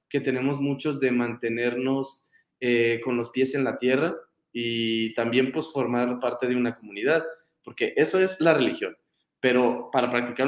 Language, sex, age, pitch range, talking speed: Spanish, male, 20-39, 120-140 Hz, 160 wpm